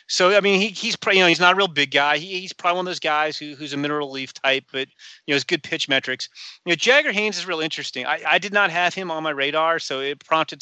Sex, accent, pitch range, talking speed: male, American, 140-180 Hz, 300 wpm